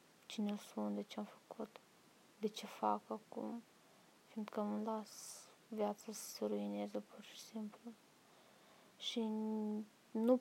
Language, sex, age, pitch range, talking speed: Romanian, female, 20-39, 200-225 Hz, 125 wpm